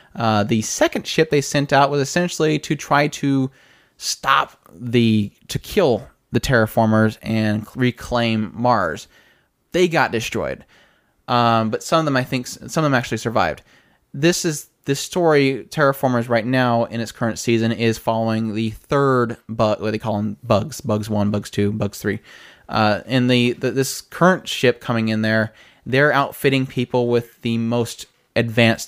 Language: English